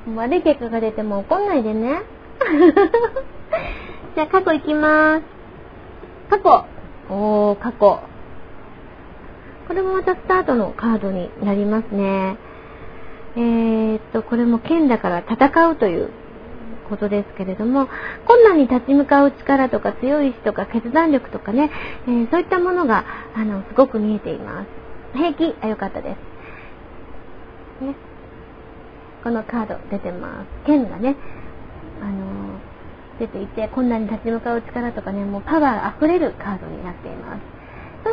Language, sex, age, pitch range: Japanese, female, 30-49, 210-300 Hz